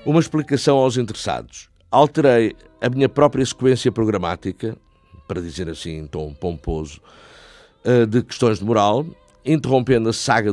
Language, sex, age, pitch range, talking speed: Portuguese, male, 50-69, 100-130 Hz, 130 wpm